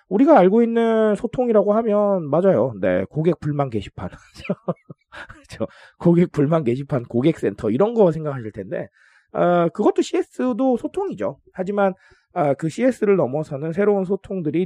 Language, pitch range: Korean, 150-225 Hz